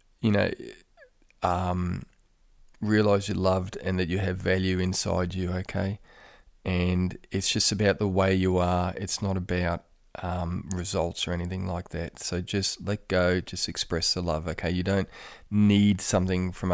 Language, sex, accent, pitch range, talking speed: English, male, Australian, 90-105 Hz, 160 wpm